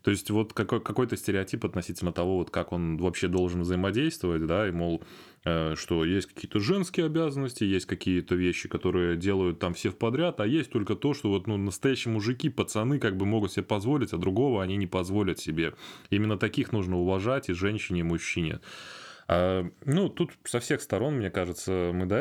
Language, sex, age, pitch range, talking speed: Russian, male, 20-39, 90-110 Hz, 185 wpm